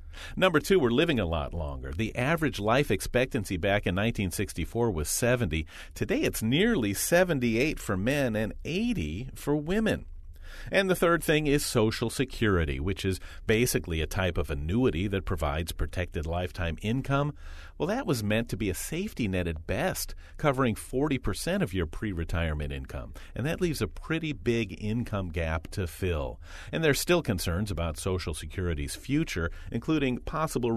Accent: American